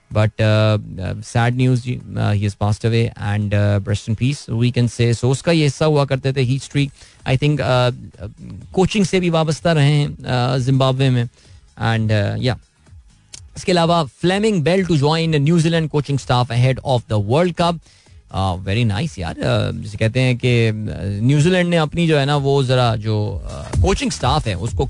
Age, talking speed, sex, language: 20-39, 200 wpm, male, Hindi